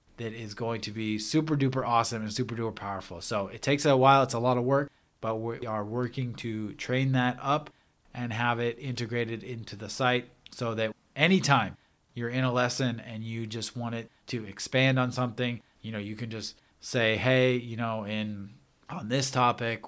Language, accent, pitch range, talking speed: English, American, 105-130 Hz, 200 wpm